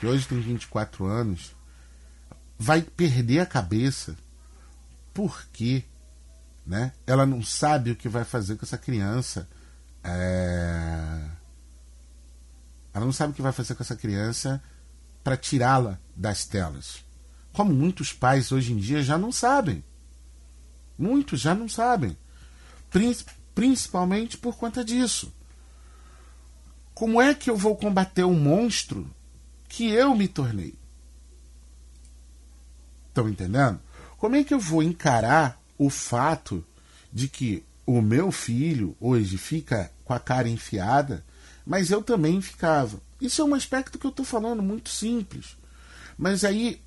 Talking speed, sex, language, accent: 130 wpm, male, Portuguese, Brazilian